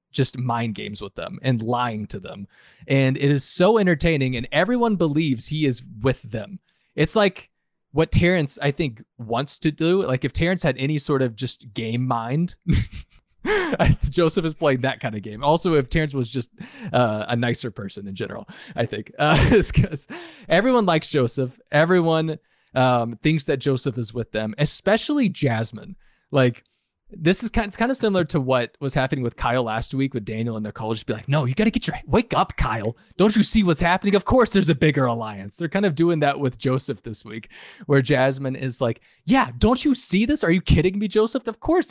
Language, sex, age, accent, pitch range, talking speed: English, male, 20-39, American, 115-165 Hz, 205 wpm